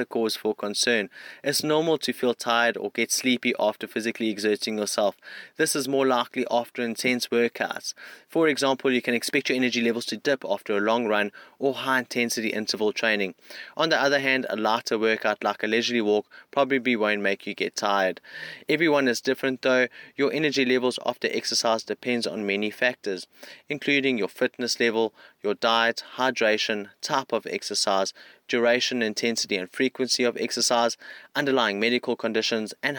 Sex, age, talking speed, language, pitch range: male, 20-39, 165 wpm, English, 110-130 Hz